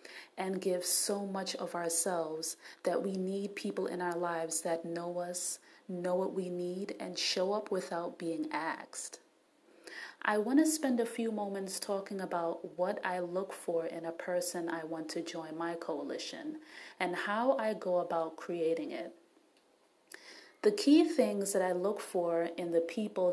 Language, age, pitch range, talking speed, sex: English, 30-49, 175-215 Hz, 165 wpm, female